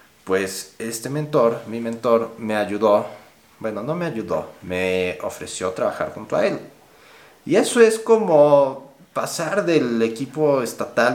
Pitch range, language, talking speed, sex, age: 100-140 Hz, Spanish, 135 wpm, male, 30-49